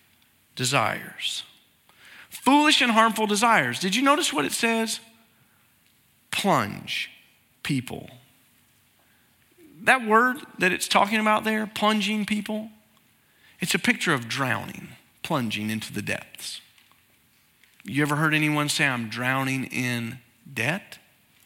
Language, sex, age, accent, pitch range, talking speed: English, male, 40-59, American, 160-250 Hz, 110 wpm